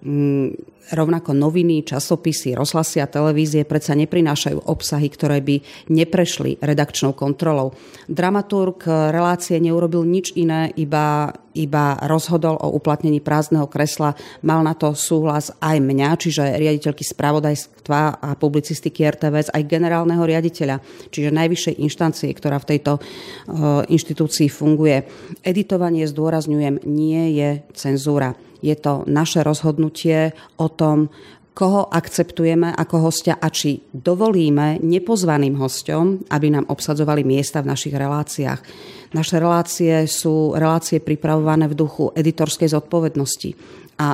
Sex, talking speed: female, 120 wpm